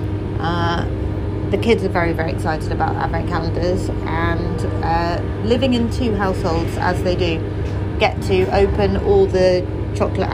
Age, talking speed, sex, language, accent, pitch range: 30-49, 145 wpm, female, English, British, 90-100 Hz